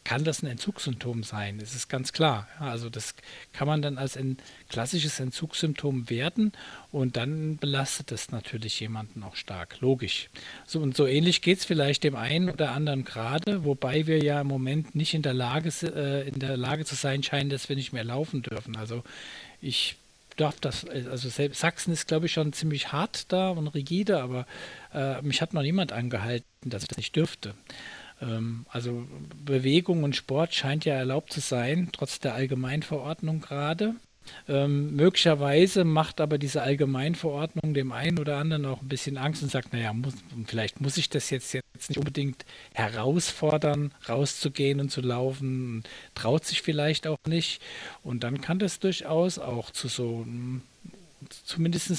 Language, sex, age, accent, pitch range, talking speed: German, male, 50-69, German, 130-155 Hz, 170 wpm